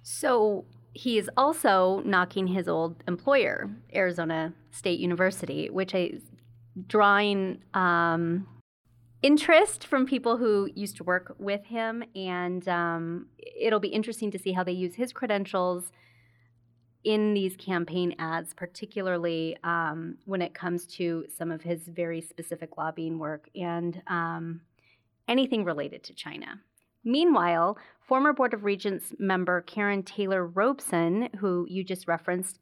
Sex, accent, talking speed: female, American, 130 wpm